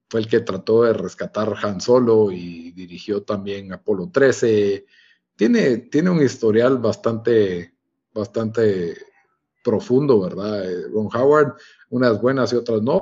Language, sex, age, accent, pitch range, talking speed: Spanish, male, 50-69, Mexican, 110-140 Hz, 130 wpm